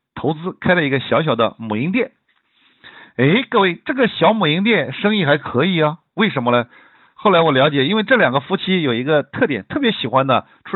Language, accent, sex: Chinese, native, male